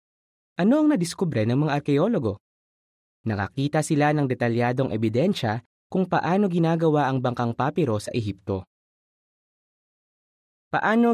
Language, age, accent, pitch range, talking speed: Filipino, 20-39, native, 115-165 Hz, 110 wpm